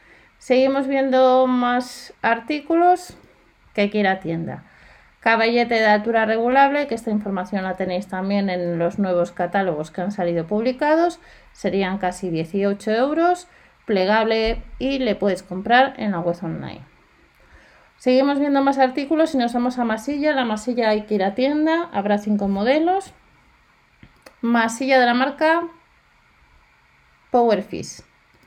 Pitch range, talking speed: 190-260 Hz, 135 wpm